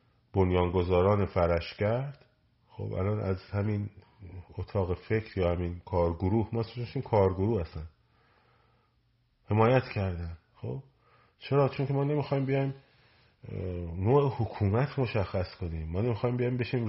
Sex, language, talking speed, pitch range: male, Persian, 120 wpm, 95-120 Hz